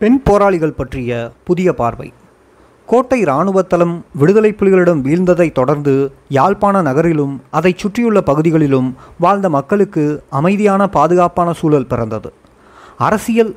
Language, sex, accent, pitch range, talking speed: Tamil, male, native, 140-200 Hz, 100 wpm